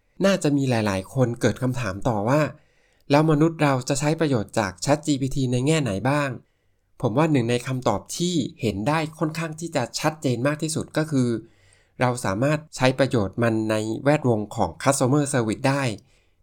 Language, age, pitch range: Thai, 20-39, 115-145 Hz